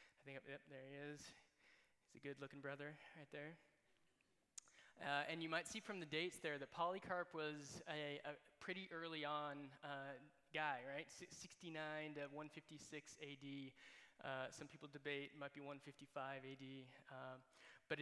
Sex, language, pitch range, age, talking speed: male, English, 140-155 Hz, 20-39, 155 wpm